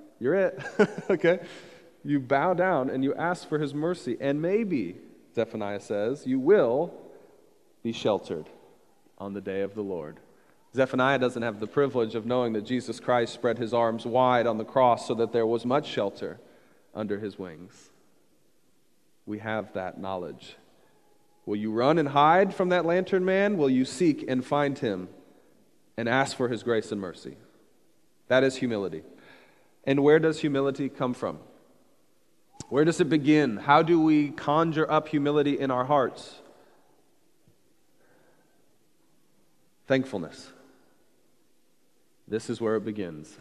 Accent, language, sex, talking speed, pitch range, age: American, English, male, 150 wpm, 110-155 Hz, 30-49